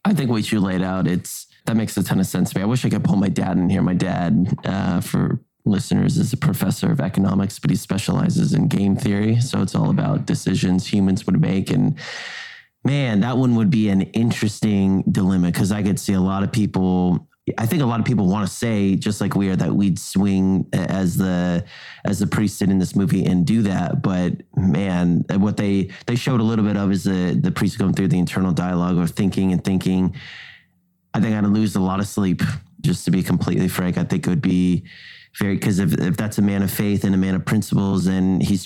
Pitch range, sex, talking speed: 90-100 Hz, male, 235 wpm